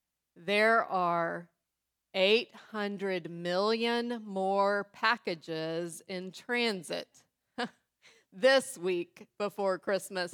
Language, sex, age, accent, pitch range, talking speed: English, female, 30-49, American, 175-220 Hz, 70 wpm